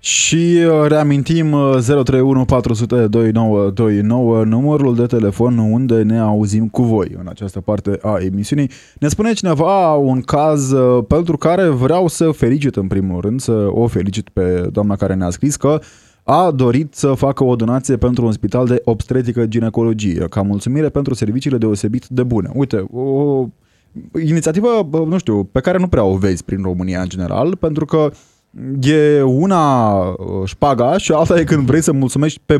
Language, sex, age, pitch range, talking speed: Romanian, male, 20-39, 110-155 Hz, 160 wpm